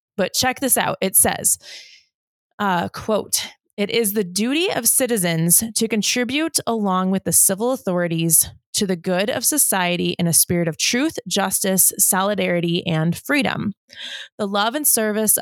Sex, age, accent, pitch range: female, 20-39, American, 180-240 Hz